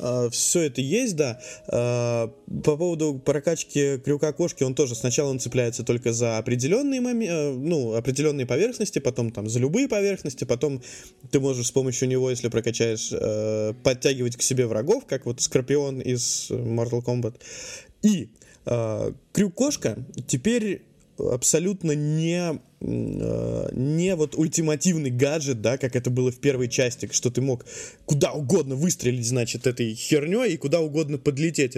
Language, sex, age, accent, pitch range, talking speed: Russian, male, 20-39, native, 120-155 Hz, 140 wpm